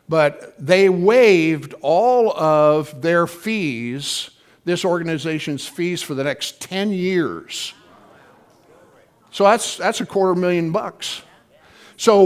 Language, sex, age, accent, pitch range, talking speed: English, male, 60-79, American, 155-200 Hz, 115 wpm